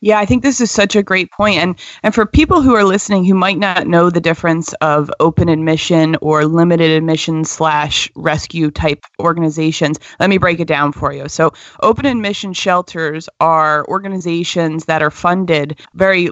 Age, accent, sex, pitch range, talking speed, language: 30-49, American, female, 155-185 Hz, 180 wpm, English